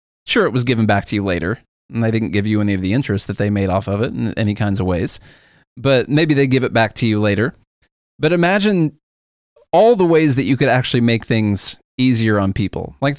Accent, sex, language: American, male, English